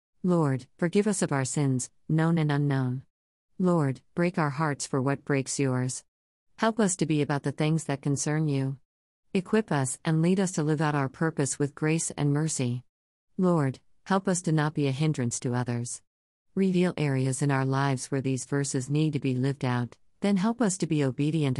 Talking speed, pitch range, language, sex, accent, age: 195 wpm, 130-165 Hz, English, female, American, 50-69